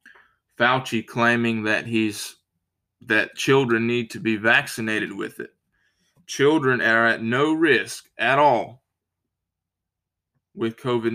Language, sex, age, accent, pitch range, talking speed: English, male, 20-39, American, 110-130 Hz, 115 wpm